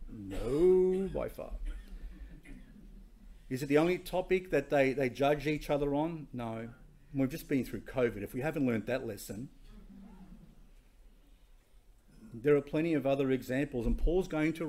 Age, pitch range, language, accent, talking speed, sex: 40-59, 125-155 Hz, English, Australian, 150 wpm, male